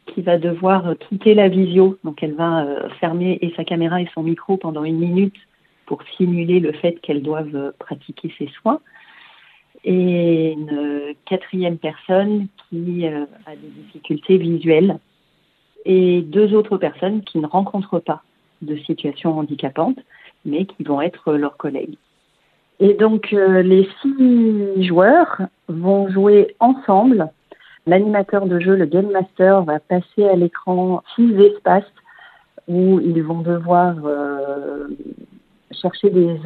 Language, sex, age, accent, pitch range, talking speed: French, female, 40-59, French, 165-200 Hz, 135 wpm